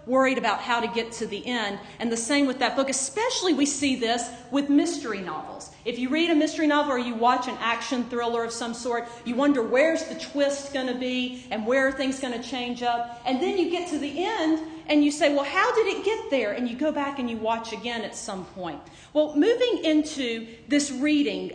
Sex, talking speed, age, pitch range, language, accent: female, 235 wpm, 40-59, 240-295 Hz, English, American